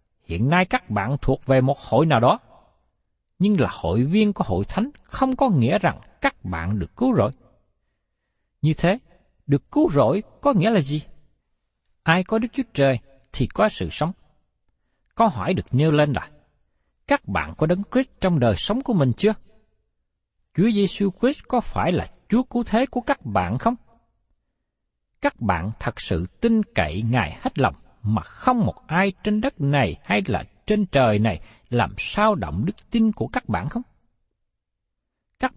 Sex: male